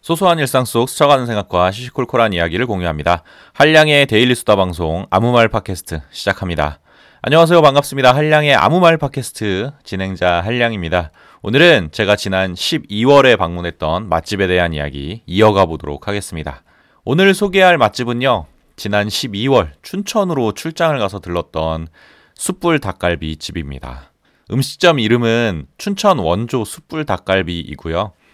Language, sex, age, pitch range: Korean, male, 30-49, 85-140 Hz